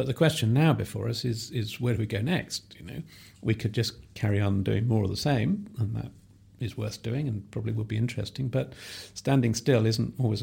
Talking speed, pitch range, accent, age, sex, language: 230 wpm, 105-125 Hz, British, 50-69, male, English